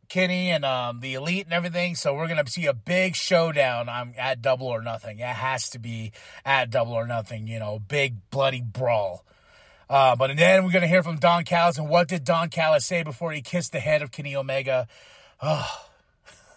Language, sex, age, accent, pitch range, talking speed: English, male, 30-49, American, 140-210 Hz, 205 wpm